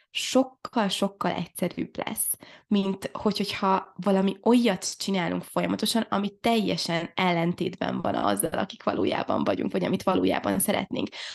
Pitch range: 180-215 Hz